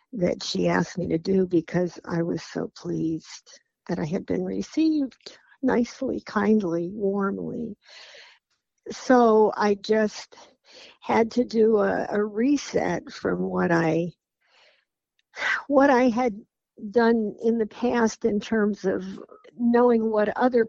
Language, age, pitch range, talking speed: English, 60-79, 170-220 Hz, 130 wpm